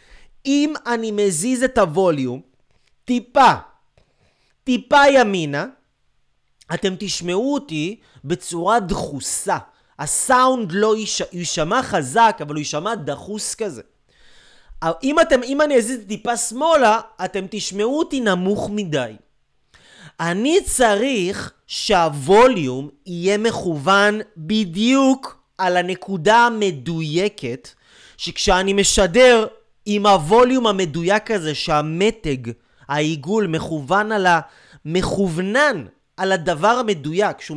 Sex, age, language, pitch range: male, 30-49, Hebrew, 155-220 Hz